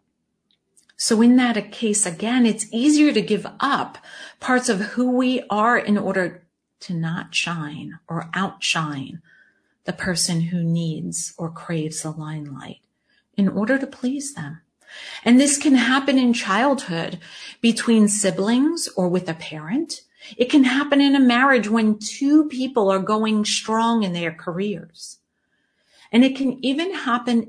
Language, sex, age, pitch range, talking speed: English, female, 40-59, 170-240 Hz, 145 wpm